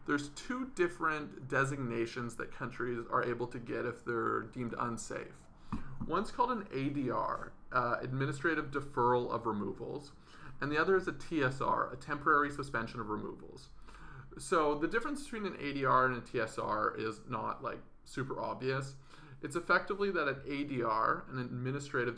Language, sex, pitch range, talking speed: English, male, 120-155 Hz, 150 wpm